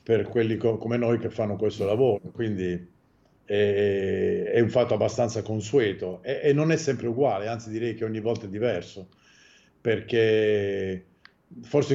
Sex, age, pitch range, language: male, 50-69, 105-125 Hz, Italian